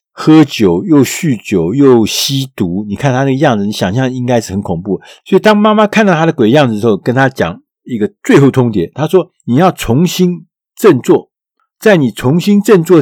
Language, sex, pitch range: Chinese, male, 105-165 Hz